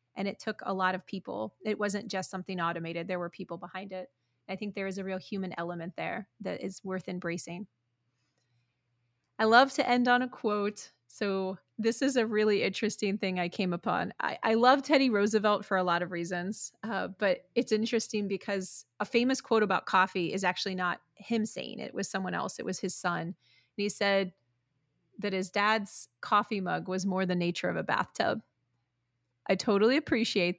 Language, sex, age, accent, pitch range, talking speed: English, female, 30-49, American, 180-210 Hz, 195 wpm